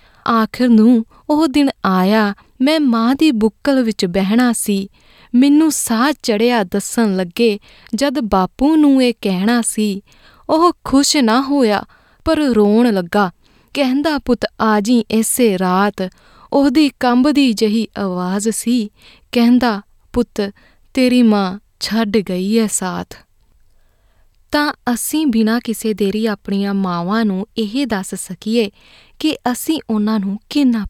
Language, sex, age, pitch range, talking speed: Punjabi, female, 20-39, 200-250 Hz, 125 wpm